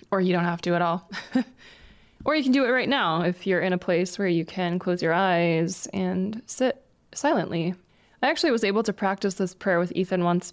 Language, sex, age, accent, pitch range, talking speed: English, female, 20-39, American, 180-220 Hz, 220 wpm